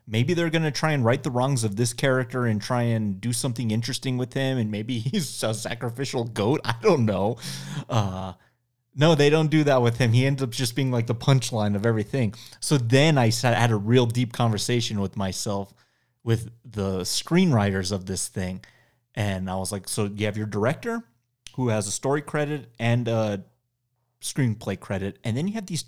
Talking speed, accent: 200 wpm, American